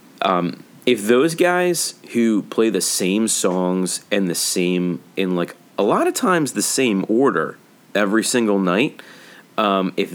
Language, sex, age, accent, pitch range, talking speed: English, male, 30-49, American, 85-105 Hz, 155 wpm